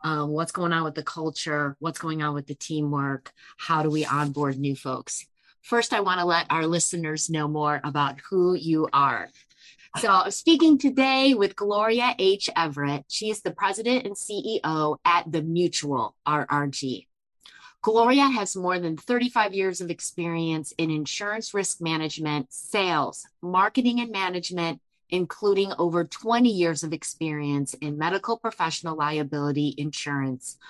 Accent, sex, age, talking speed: American, female, 30-49, 150 wpm